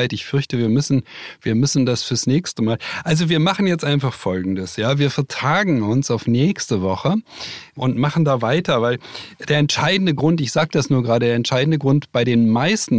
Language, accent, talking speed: German, German, 195 wpm